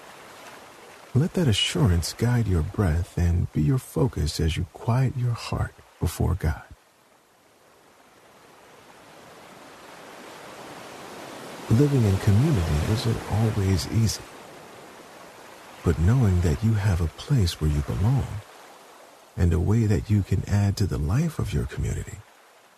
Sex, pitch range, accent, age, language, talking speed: male, 85-115 Hz, American, 50-69, English, 120 wpm